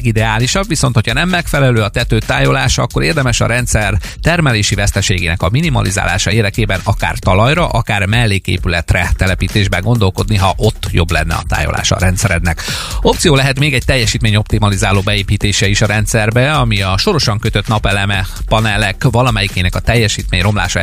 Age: 30-49